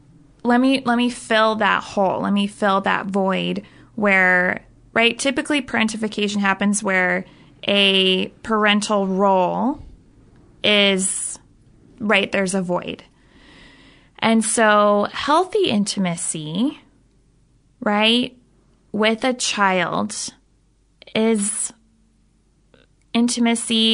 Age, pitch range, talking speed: 20-39, 195-230 Hz, 90 wpm